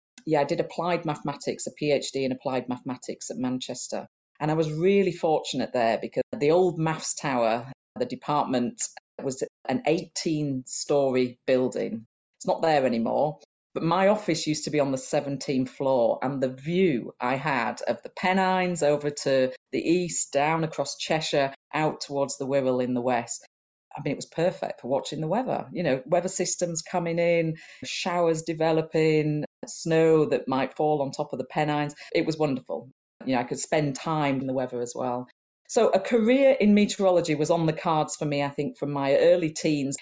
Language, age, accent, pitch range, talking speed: English, 40-59, British, 135-165 Hz, 180 wpm